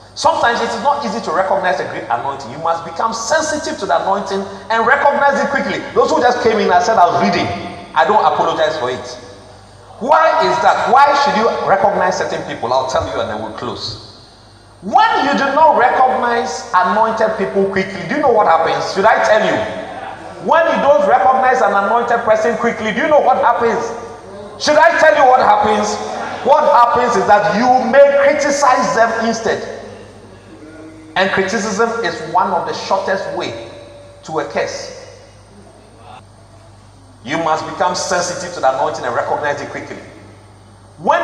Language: English